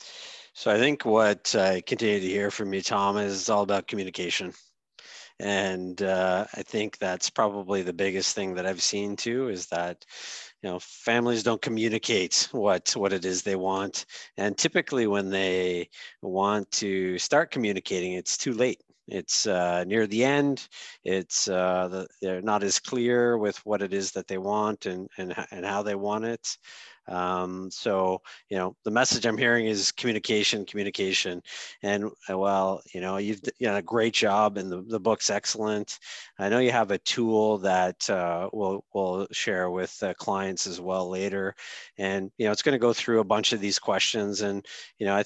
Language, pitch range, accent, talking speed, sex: English, 95-110 Hz, American, 185 wpm, male